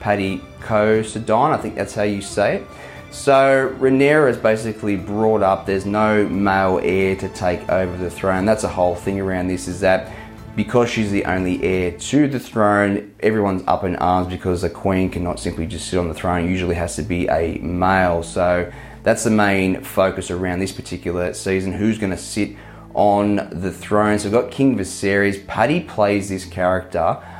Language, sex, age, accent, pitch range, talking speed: English, male, 20-39, Australian, 90-105 Hz, 185 wpm